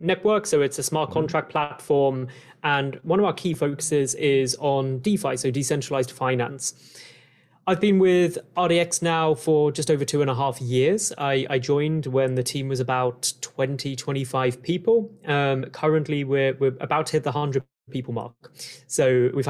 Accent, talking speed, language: British, 170 wpm, English